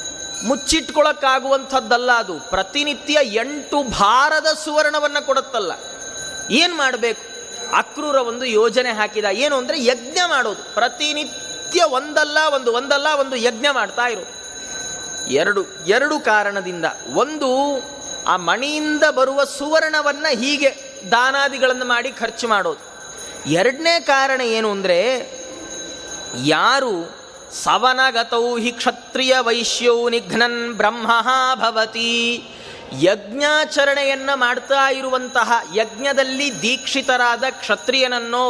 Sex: male